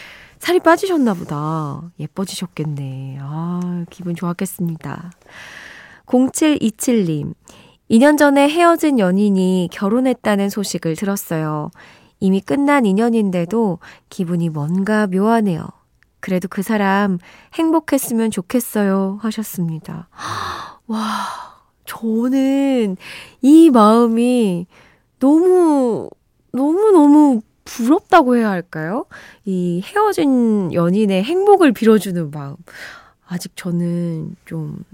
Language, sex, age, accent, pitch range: Korean, female, 20-39, native, 175-250 Hz